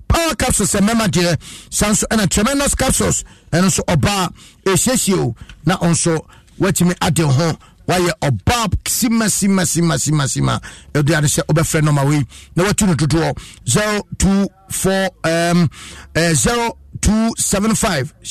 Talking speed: 140 wpm